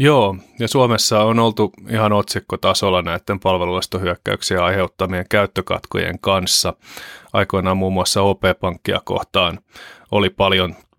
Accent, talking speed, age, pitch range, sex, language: native, 110 wpm, 30-49, 95-110 Hz, male, Finnish